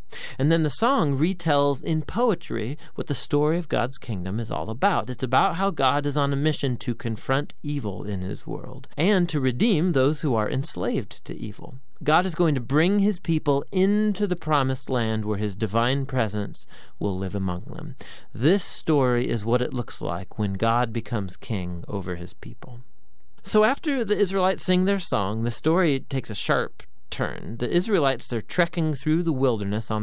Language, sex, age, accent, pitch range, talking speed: English, male, 40-59, American, 120-170 Hz, 185 wpm